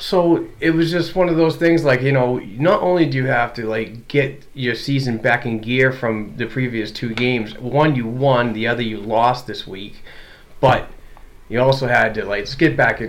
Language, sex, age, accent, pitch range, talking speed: English, male, 30-49, American, 110-130 Hz, 215 wpm